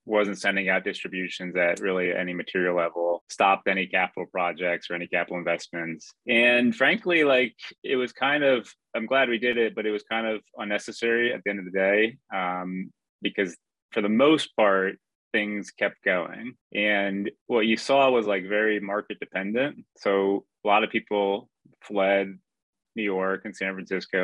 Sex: male